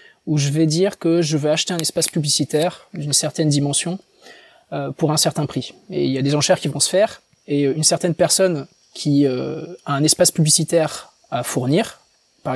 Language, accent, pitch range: French, French, 145-175 Hz